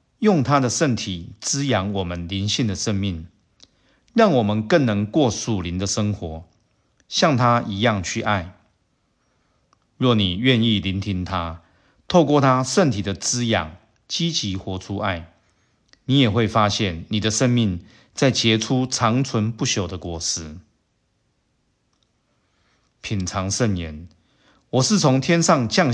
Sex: male